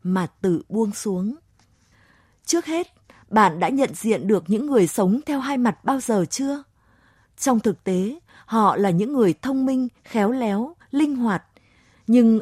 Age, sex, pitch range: 20-39, female, 190-255 Hz